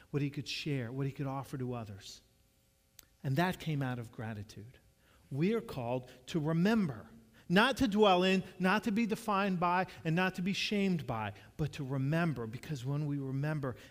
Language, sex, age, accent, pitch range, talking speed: English, male, 40-59, American, 115-155 Hz, 185 wpm